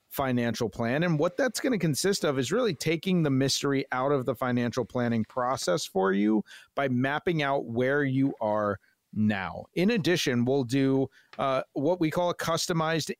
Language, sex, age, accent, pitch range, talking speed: English, male, 40-59, American, 120-160 Hz, 175 wpm